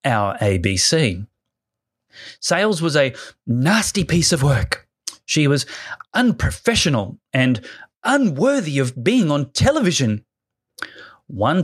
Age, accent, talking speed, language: 30-49, Australian, 100 wpm, English